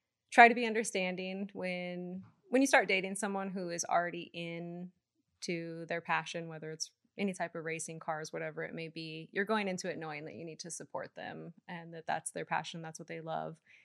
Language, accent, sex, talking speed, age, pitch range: English, American, female, 210 wpm, 20-39, 165-185 Hz